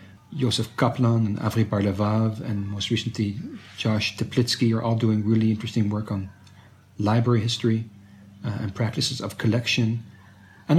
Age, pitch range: 40-59, 110-125 Hz